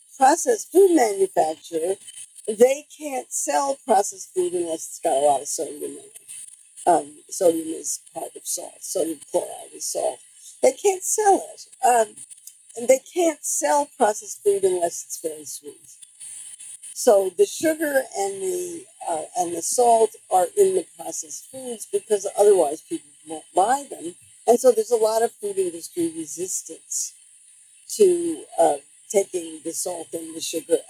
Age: 50-69